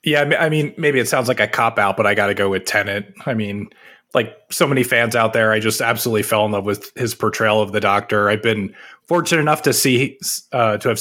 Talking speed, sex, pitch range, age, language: 250 wpm, male, 105-130 Hz, 20-39, English